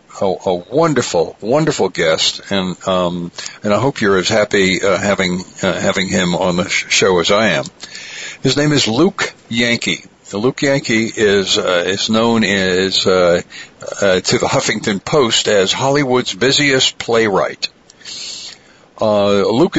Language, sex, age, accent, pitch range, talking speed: English, male, 60-79, American, 105-135 Hz, 150 wpm